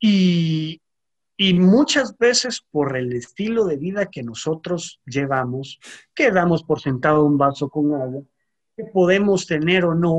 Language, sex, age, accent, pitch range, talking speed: Spanish, male, 40-59, Mexican, 150-190 Hz, 145 wpm